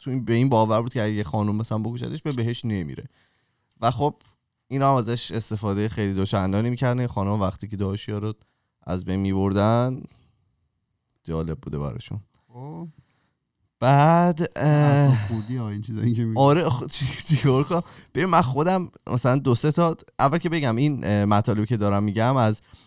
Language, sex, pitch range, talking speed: Persian, male, 95-120 Hz, 130 wpm